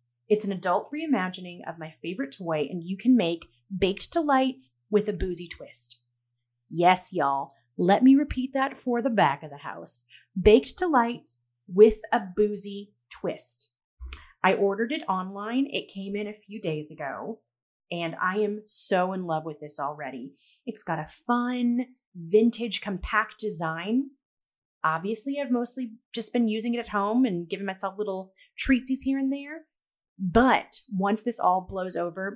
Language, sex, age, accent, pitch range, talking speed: English, female, 30-49, American, 175-250 Hz, 160 wpm